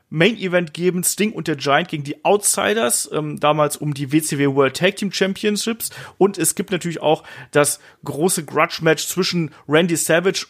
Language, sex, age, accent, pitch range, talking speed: German, male, 30-49, German, 140-190 Hz, 165 wpm